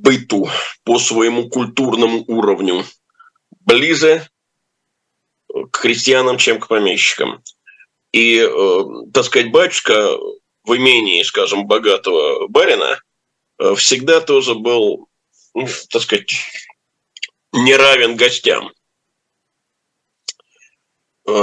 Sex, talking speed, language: male, 75 wpm, Russian